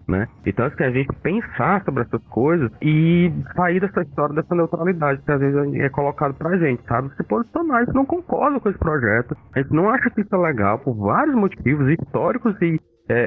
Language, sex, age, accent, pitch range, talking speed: Portuguese, male, 20-39, Brazilian, 120-175 Hz, 205 wpm